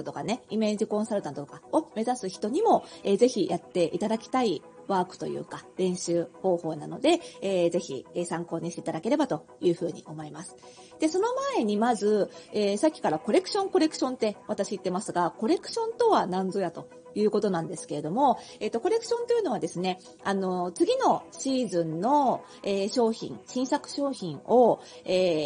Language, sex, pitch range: Japanese, female, 185-295 Hz